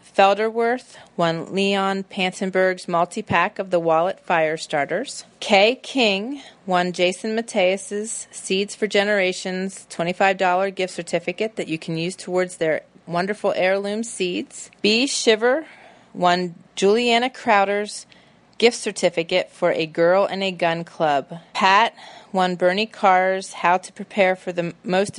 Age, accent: 30-49, American